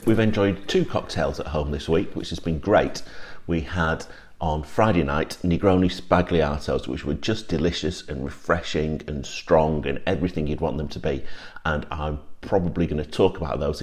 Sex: male